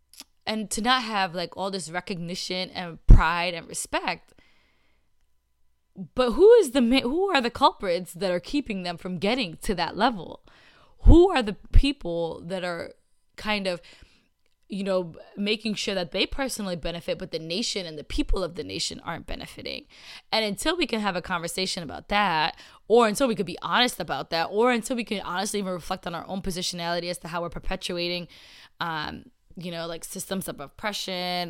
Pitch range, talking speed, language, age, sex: 170-225 Hz, 185 wpm, English, 10-29, female